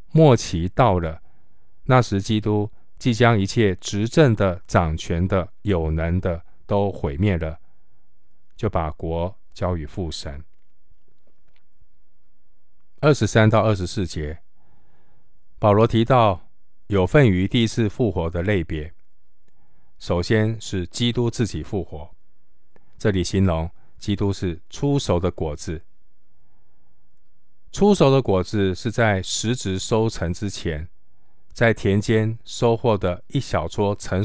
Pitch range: 85-115 Hz